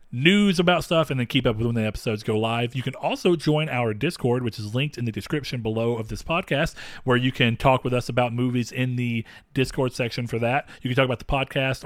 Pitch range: 115-145 Hz